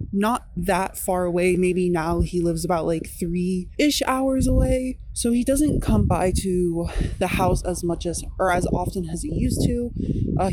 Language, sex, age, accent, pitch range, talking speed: English, female, 20-39, American, 185-250 Hz, 190 wpm